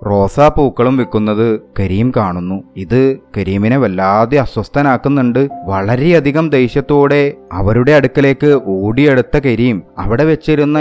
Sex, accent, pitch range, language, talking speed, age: male, native, 105-140 Hz, Malayalam, 95 wpm, 30-49